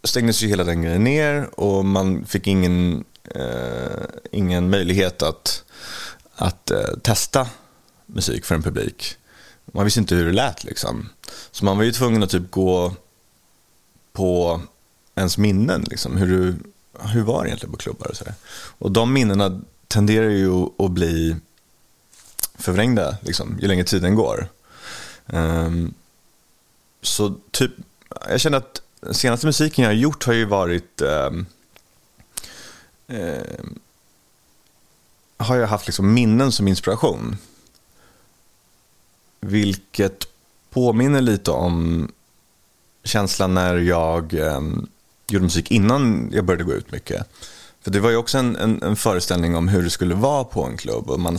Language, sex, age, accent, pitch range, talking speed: English, male, 30-49, Swedish, 90-110 Hz, 130 wpm